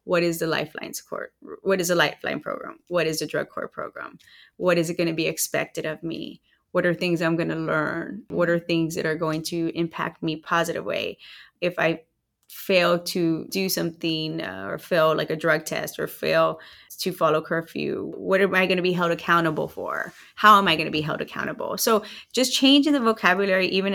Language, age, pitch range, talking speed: English, 20-39, 165-210 Hz, 205 wpm